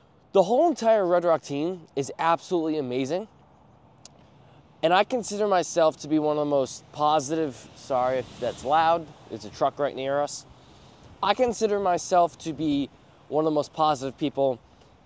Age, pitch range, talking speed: 20-39, 135-180 Hz, 165 wpm